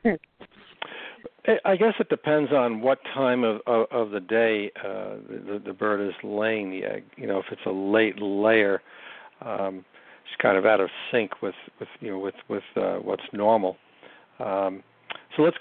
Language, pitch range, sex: English, 100-115 Hz, male